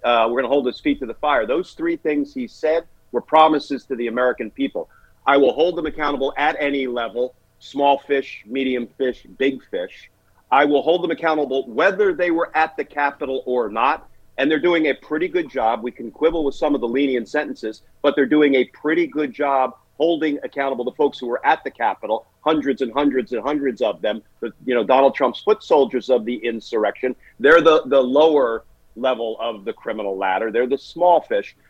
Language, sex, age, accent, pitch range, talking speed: English, male, 50-69, American, 125-155 Hz, 205 wpm